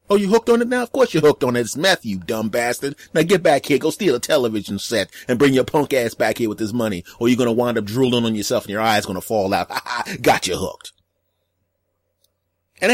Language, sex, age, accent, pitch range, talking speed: English, male, 30-49, American, 105-150 Hz, 260 wpm